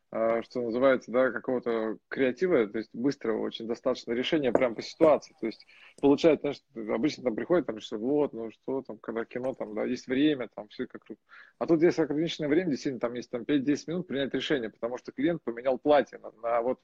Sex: male